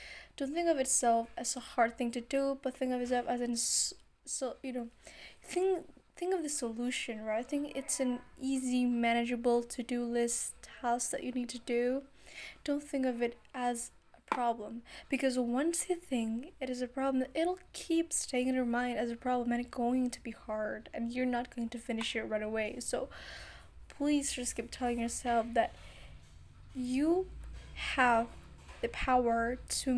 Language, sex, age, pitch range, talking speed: English, female, 10-29, 240-270 Hz, 180 wpm